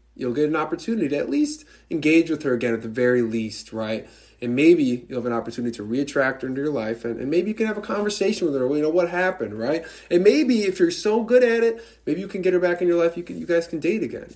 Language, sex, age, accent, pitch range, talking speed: English, male, 20-39, American, 115-180 Hz, 285 wpm